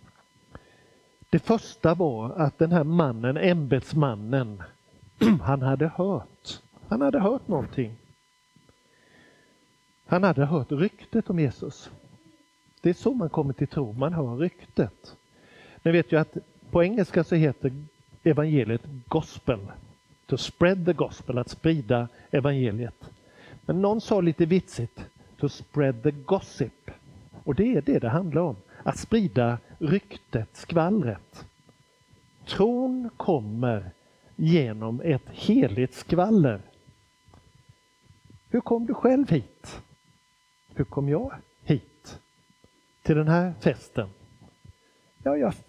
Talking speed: 115 wpm